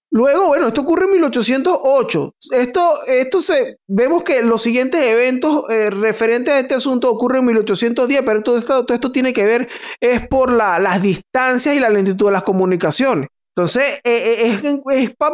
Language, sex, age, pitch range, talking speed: Spanish, male, 30-49, 210-260 Hz, 185 wpm